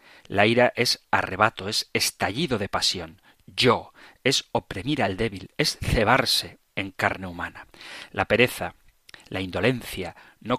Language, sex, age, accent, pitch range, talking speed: Spanish, male, 40-59, Spanish, 95-120 Hz, 130 wpm